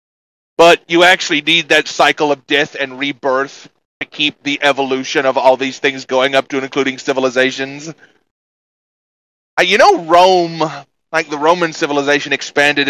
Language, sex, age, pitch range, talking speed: English, male, 30-49, 130-160 Hz, 155 wpm